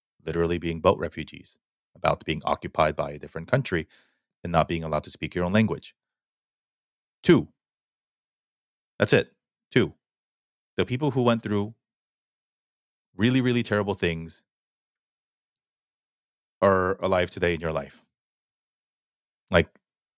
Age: 30-49